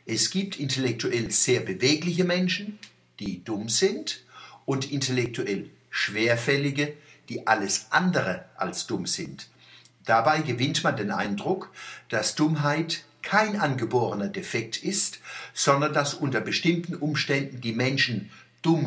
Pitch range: 110-155 Hz